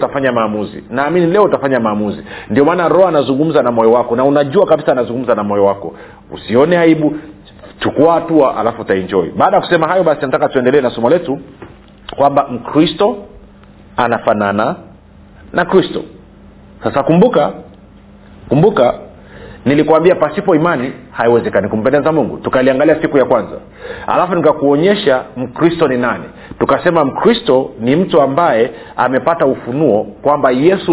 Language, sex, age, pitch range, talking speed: Swahili, male, 40-59, 125-170 Hz, 135 wpm